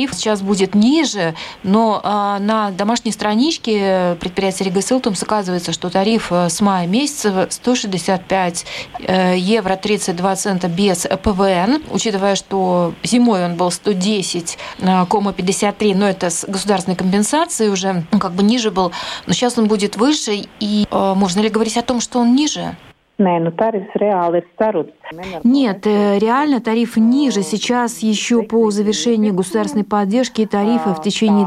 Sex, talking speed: female, 135 wpm